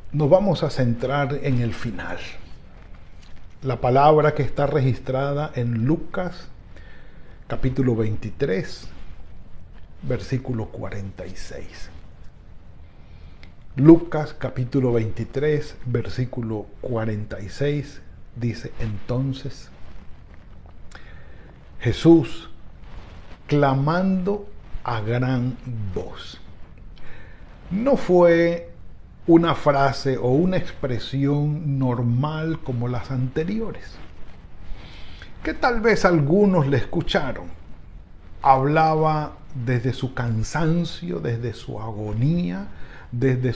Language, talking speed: Spanish, 75 wpm